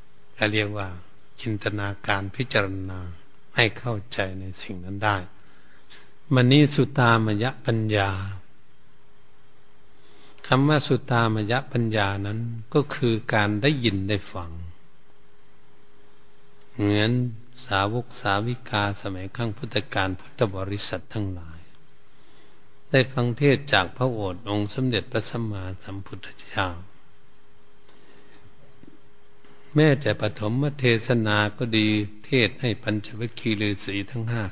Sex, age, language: male, 70-89, Thai